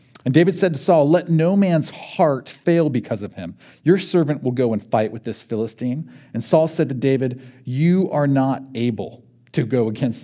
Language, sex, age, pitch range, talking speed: English, male, 40-59, 115-145 Hz, 200 wpm